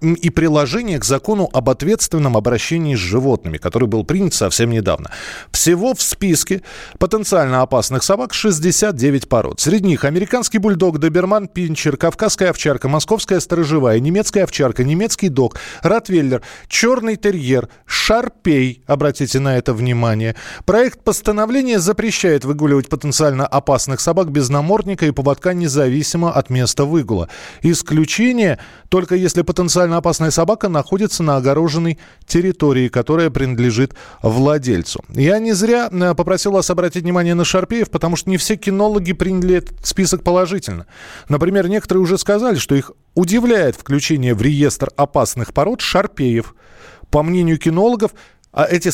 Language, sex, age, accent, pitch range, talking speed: Russian, male, 20-39, native, 135-190 Hz, 130 wpm